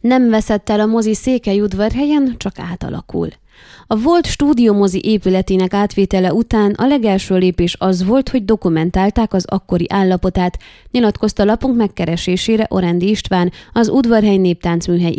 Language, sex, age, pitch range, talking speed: Hungarian, female, 20-39, 180-225 Hz, 130 wpm